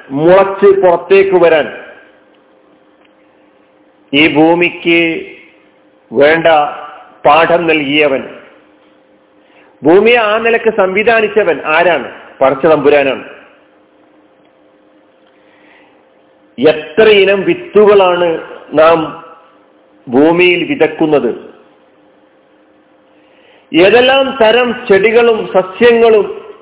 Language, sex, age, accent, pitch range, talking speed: Malayalam, male, 50-69, native, 155-230 Hz, 50 wpm